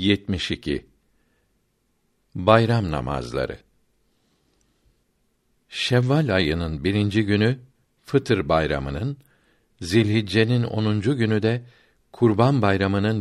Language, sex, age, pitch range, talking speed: Turkish, male, 60-79, 90-120 Hz, 70 wpm